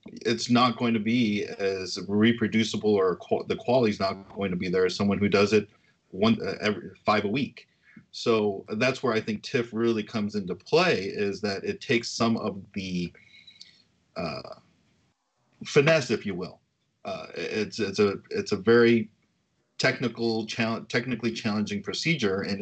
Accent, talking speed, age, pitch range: American, 165 wpm, 40-59, 100-120 Hz